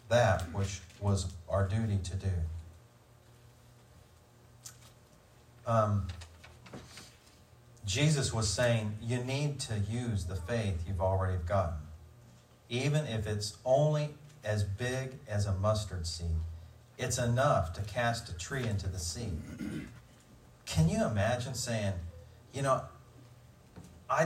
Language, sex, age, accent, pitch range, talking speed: English, male, 40-59, American, 100-120 Hz, 115 wpm